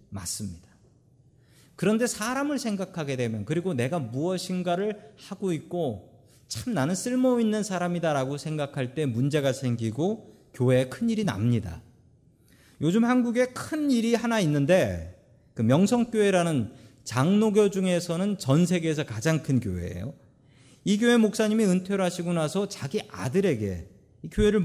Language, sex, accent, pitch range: Korean, male, native, 125-195 Hz